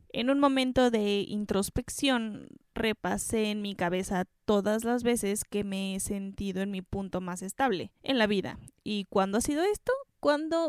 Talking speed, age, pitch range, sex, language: 170 wpm, 10-29, 195-250 Hz, female, Spanish